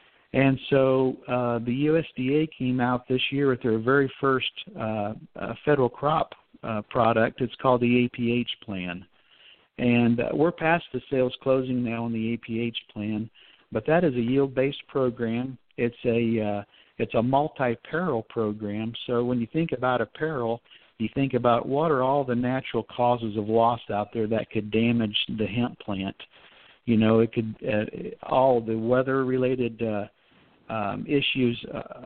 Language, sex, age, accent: English, male, 50-69, American